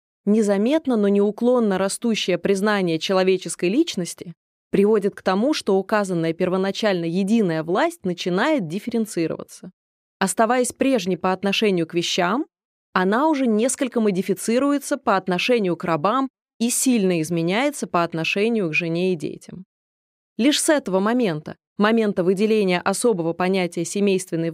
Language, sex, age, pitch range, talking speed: Russian, female, 20-39, 180-230 Hz, 120 wpm